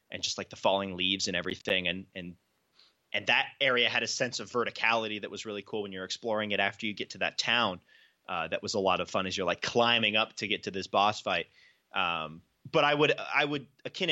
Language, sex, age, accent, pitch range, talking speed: English, male, 20-39, American, 105-150 Hz, 240 wpm